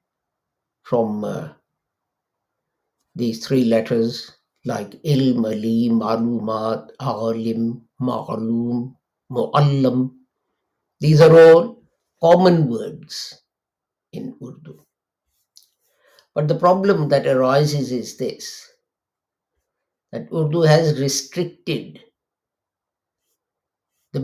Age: 50-69